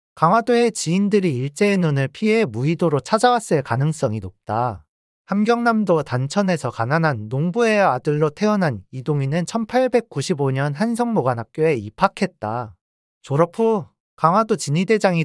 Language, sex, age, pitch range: Korean, male, 40-59, 130-205 Hz